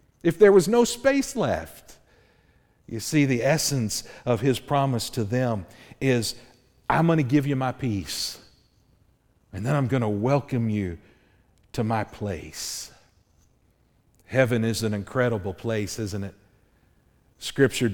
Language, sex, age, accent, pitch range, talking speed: English, male, 50-69, American, 105-130 Hz, 135 wpm